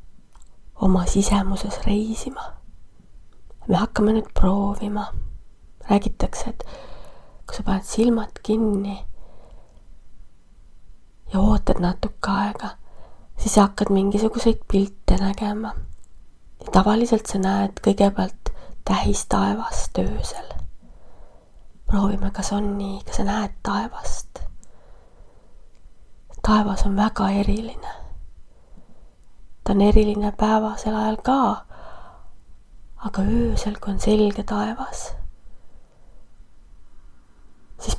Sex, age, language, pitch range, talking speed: female, 30-49, English, 195-215 Hz, 90 wpm